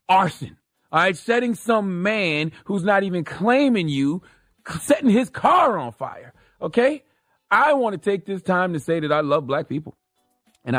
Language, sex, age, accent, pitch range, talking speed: English, male, 30-49, American, 125-175 Hz, 165 wpm